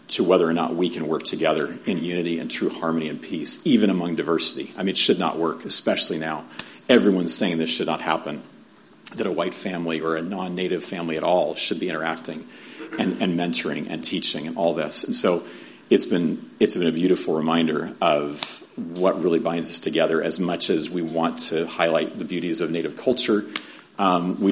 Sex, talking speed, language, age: male, 200 wpm, English, 40-59